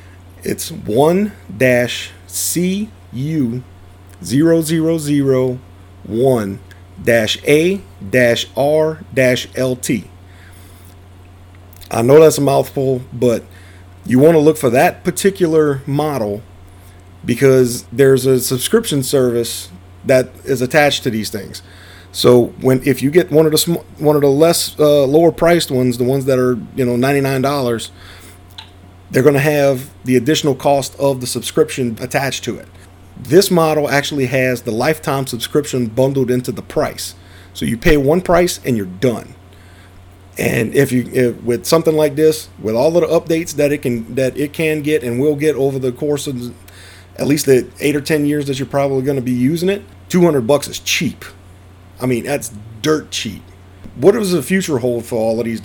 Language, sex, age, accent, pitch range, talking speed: English, male, 40-59, American, 95-145 Hz, 155 wpm